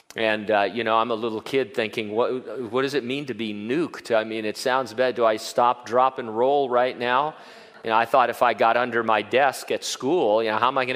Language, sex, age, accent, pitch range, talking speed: English, male, 40-59, American, 115-155 Hz, 265 wpm